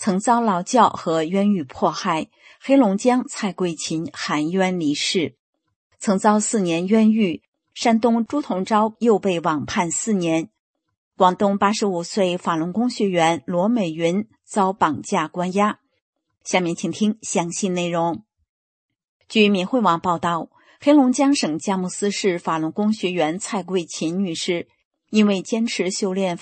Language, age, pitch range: English, 50-69, 170-220 Hz